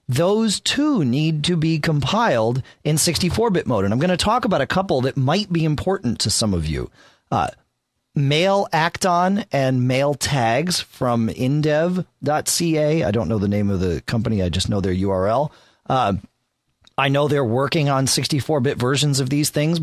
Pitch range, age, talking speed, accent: 110-155 Hz, 40-59, 175 wpm, American